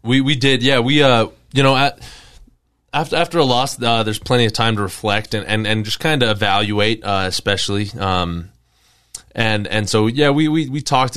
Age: 20-39